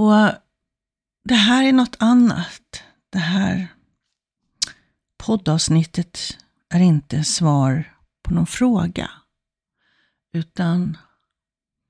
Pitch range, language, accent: 170-210 Hz, Swedish, native